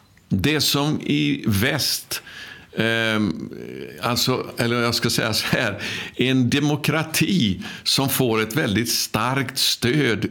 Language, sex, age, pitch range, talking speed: Swedish, male, 60-79, 105-130 Hz, 110 wpm